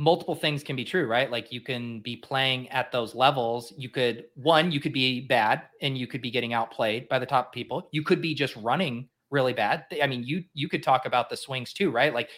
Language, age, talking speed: English, 30-49, 240 wpm